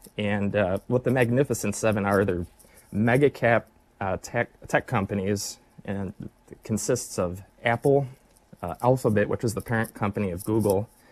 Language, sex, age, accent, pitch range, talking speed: English, male, 20-39, American, 100-120 Hz, 140 wpm